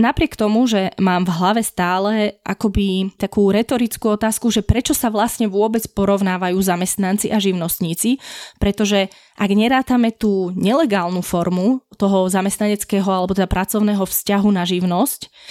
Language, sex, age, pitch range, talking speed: Slovak, female, 20-39, 190-230 Hz, 130 wpm